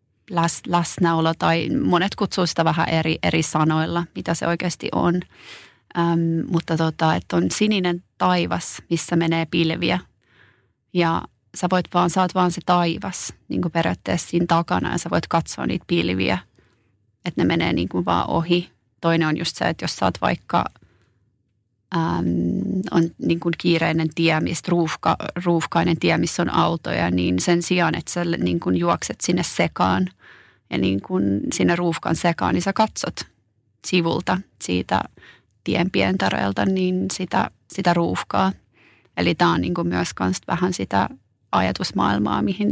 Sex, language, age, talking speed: female, Finnish, 30-49, 145 wpm